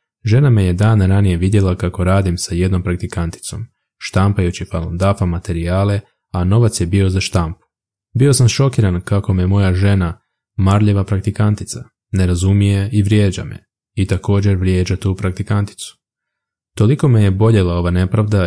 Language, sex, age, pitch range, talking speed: Croatian, male, 20-39, 95-110 Hz, 145 wpm